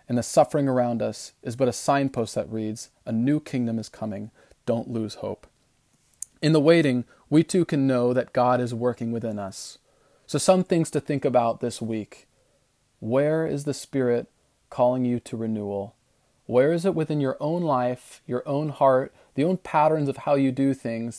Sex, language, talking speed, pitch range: male, English, 185 wpm, 115-140 Hz